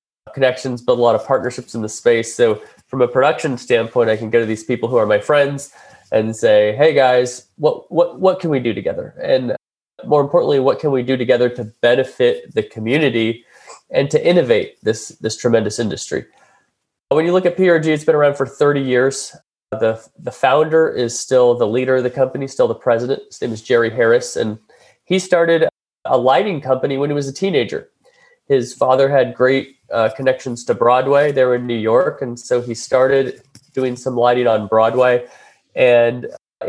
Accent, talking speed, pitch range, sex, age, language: American, 190 wpm, 125-160 Hz, male, 20-39, English